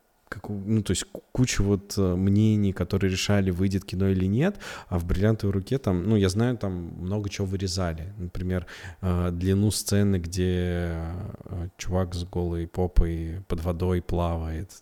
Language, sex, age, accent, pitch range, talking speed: Russian, male, 20-39, native, 90-100 Hz, 145 wpm